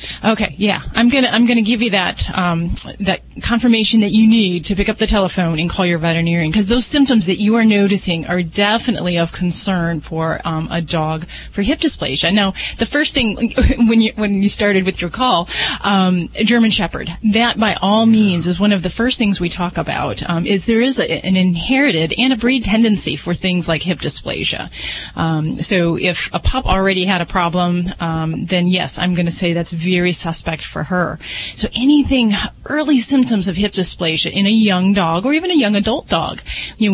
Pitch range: 175-220 Hz